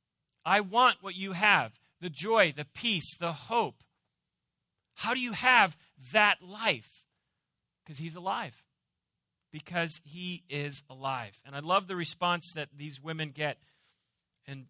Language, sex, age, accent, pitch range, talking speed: English, male, 40-59, American, 145-200 Hz, 140 wpm